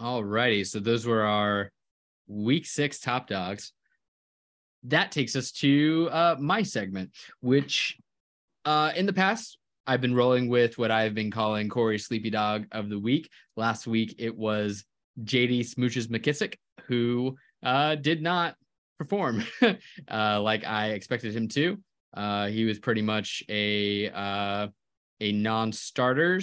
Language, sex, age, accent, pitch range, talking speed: English, male, 20-39, American, 105-145 Hz, 145 wpm